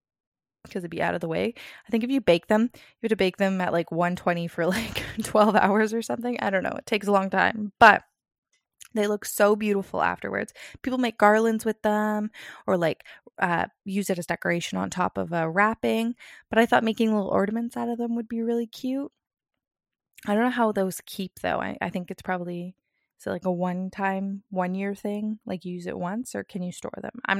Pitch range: 185-230 Hz